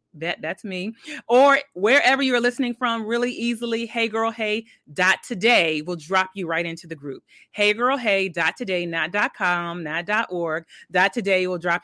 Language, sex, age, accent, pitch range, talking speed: English, female, 30-49, American, 185-250 Hz, 160 wpm